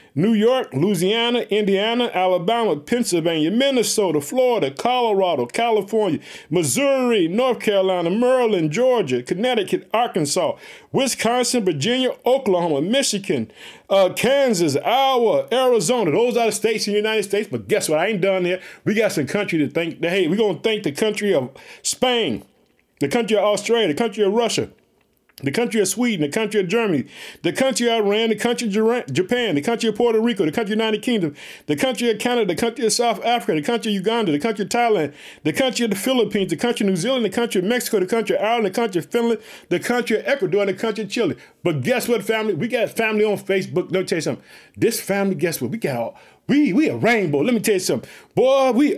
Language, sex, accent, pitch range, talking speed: English, male, American, 190-240 Hz, 205 wpm